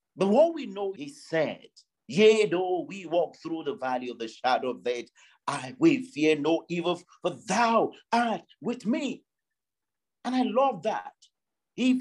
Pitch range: 135-220 Hz